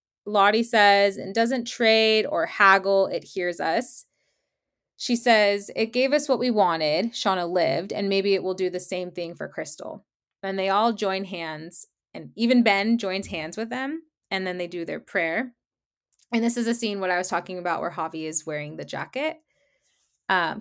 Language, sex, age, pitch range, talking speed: English, female, 20-39, 180-230 Hz, 190 wpm